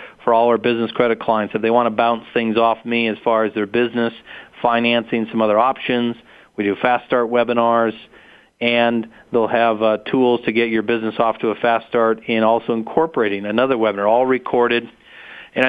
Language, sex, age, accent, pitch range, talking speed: English, male, 40-59, American, 115-125 Hz, 190 wpm